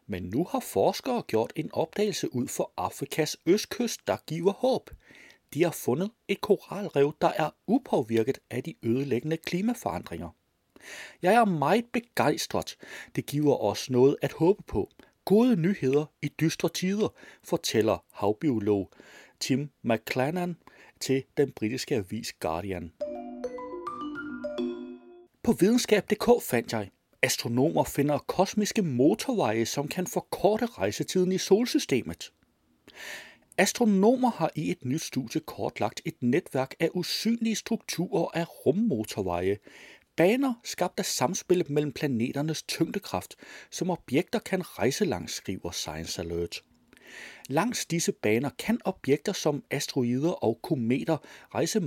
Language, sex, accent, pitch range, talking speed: Danish, male, native, 130-200 Hz, 120 wpm